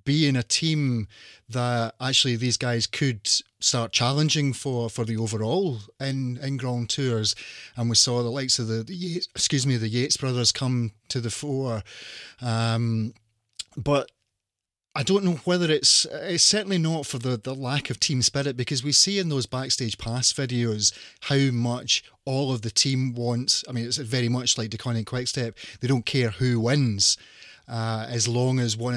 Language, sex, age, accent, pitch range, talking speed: English, male, 30-49, British, 115-140 Hz, 180 wpm